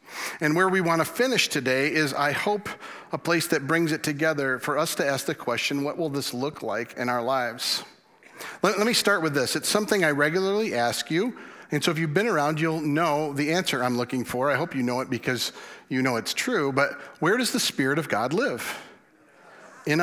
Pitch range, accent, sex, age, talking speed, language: 135-165 Hz, American, male, 40-59, 220 wpm, English